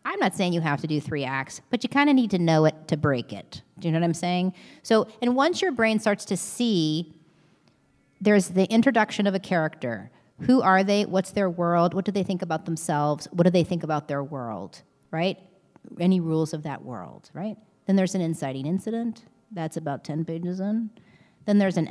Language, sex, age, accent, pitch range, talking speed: English, female, 40-59, American, 145-190 Hz, 215 wpm